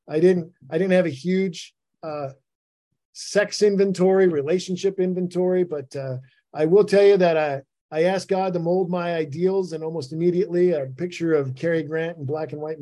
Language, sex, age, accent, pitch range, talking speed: English, male, 50-69, American, 135-170 Hz, 185 wpm